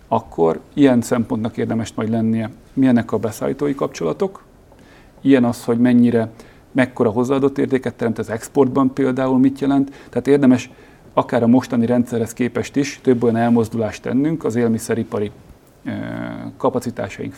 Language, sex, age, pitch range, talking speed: Hungarian, male, 40-59, 110-130 Hz, 130 wpm